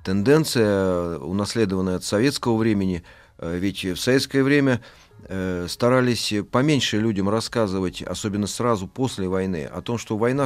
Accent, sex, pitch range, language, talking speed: native, male, 95-120 Hz, Russian, 120 wpm